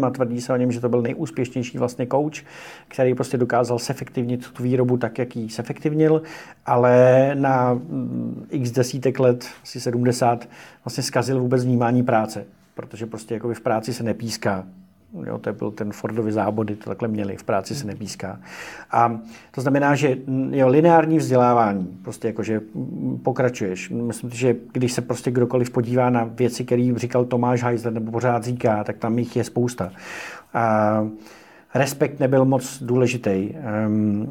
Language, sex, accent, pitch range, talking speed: Czech, male, native, 115-130 Hz, 155 wpm